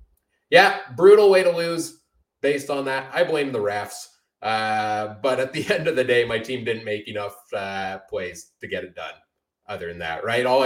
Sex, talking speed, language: male, 205 wpm, English